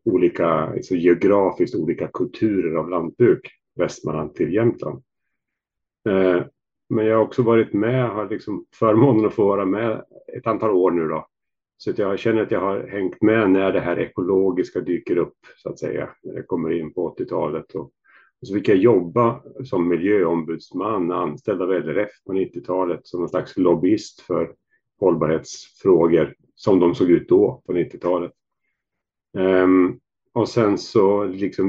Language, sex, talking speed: Swedish, male, 155 wpm